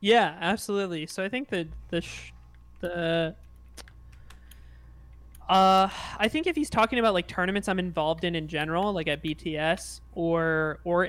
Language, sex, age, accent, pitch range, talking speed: English, male, 20-39, American, 155-180 Hz, 145 wpm